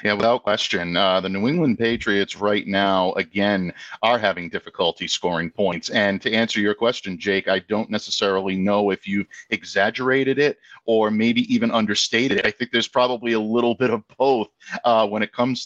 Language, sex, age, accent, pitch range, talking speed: English, male, 50-69, American, 100-125 Hz, 185 wpm